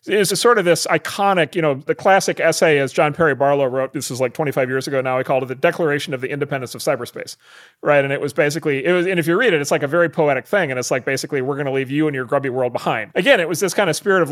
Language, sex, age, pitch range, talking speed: English, male, 40-59, 130-170 Hz, 305 wpm